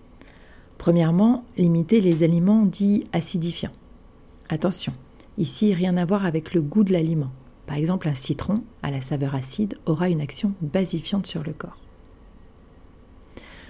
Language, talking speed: French, 135 wpm